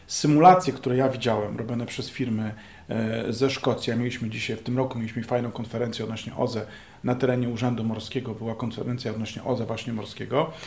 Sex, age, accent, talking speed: male, 40-59, native, 165 wpm